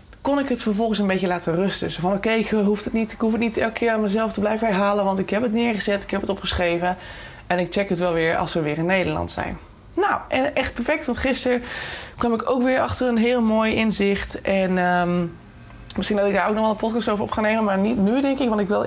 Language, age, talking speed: Dutch, 20-39, 265 wpm